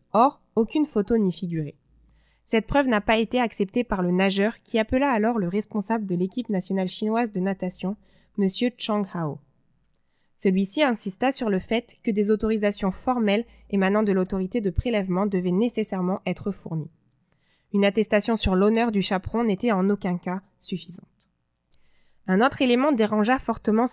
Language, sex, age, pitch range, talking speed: French, female, 20-39, 190-235 Hz, 155 wpm